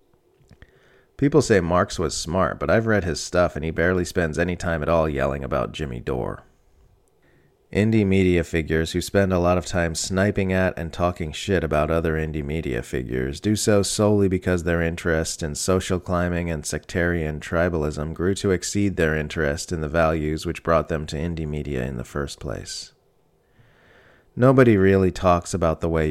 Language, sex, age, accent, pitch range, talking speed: English, male, 30-49, American, 80-95 Hz, 175 wpm